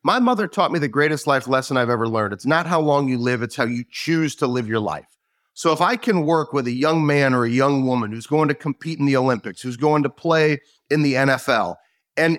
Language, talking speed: English, 255 wpm